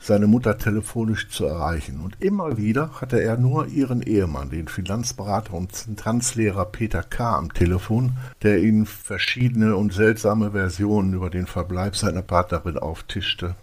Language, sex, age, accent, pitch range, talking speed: German, male, 60-79, German, 95-115 Hz, 145 wpm